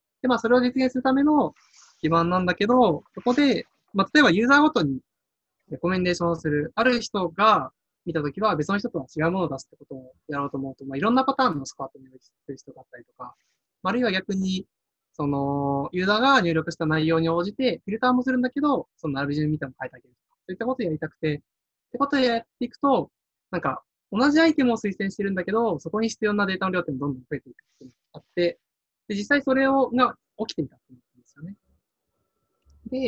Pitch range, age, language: 145-230 Hz, 20-39, Japanese